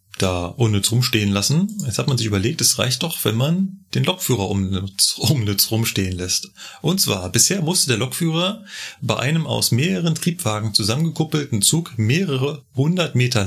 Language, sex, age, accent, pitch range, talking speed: German, male, 30-49, German, 105-150 Hz, 155 wpm